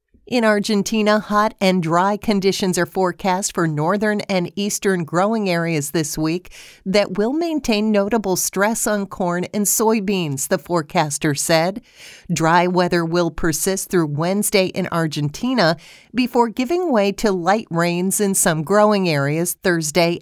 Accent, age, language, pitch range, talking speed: American, 50-69, English, 170-210 Hz, 140 wpm